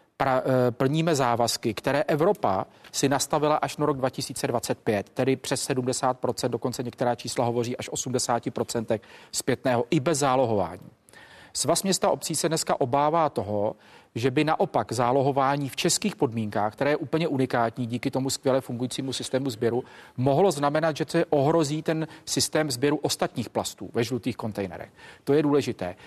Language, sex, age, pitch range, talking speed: Czech, male, 40-59, 120-150 Hz, 145 wpm